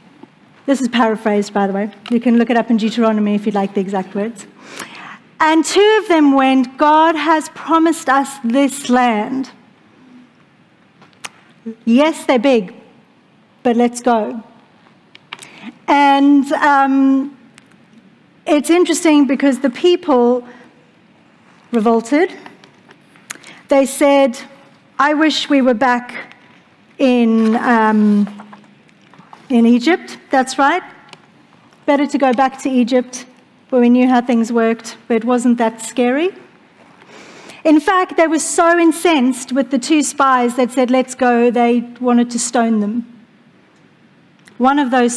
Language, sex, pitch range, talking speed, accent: English, female, 230-285 Hz, 130 wpm, Australian